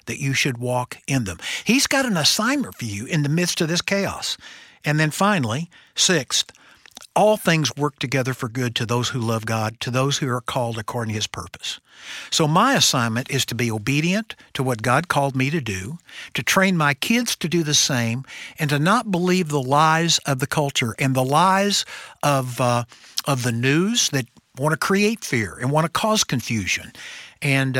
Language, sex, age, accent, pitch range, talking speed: English, male, 60-79, American, 130-185 Hz, 200 wpm